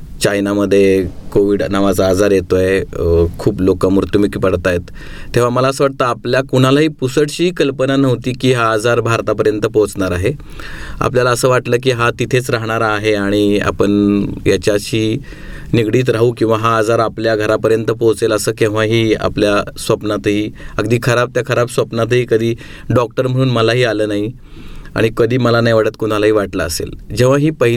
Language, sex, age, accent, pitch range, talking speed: Marathi, male, 30-49, native, 105-125 Hz, 130 wpm